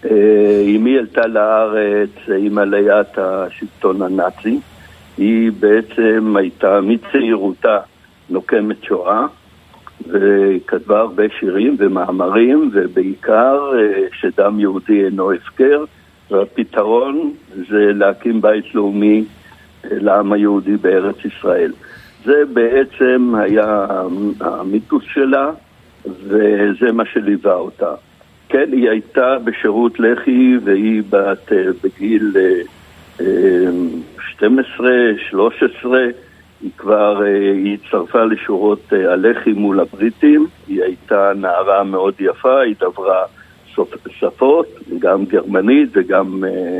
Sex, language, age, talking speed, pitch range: male, Hebrew, 60-79, 95 wpm, 100-140 Hz